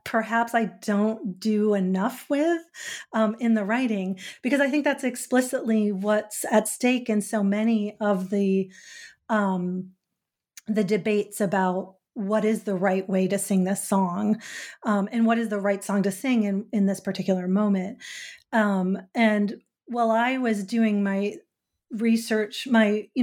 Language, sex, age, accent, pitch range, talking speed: English, female, 30-49, American, 195-230 Hz, 155 wpm